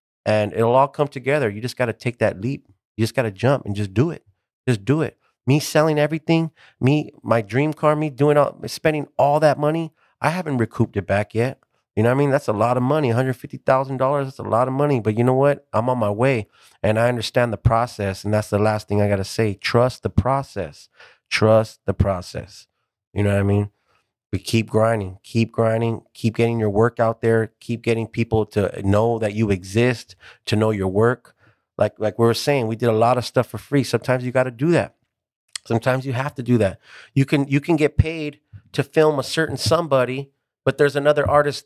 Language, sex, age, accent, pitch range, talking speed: English, male, 30-49, American, 110-145 Hz, 225 wpm